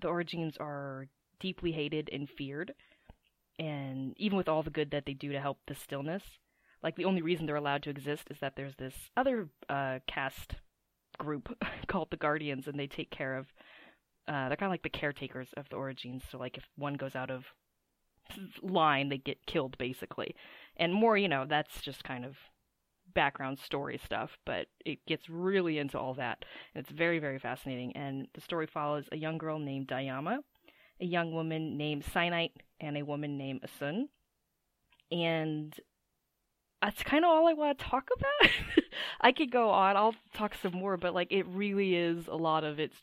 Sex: female